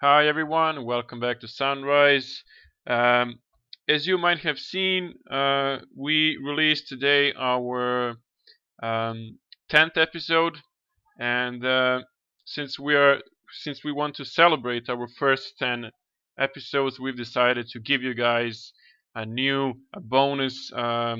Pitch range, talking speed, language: 120-140 Hz, 120 wpm, English